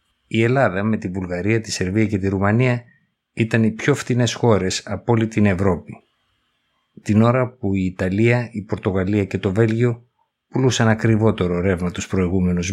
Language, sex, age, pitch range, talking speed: Greek, male, 60-79, 100-120 Hz, 160 wpm